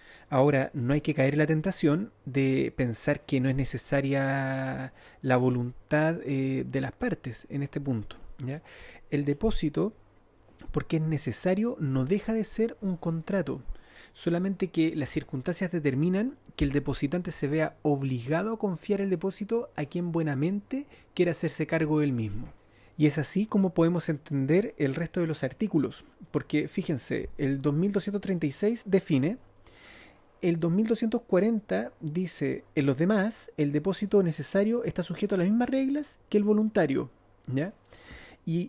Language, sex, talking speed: Spanish, male, 145 wpm